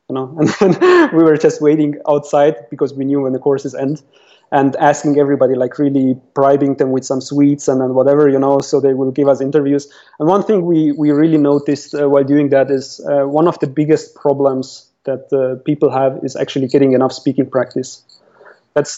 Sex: male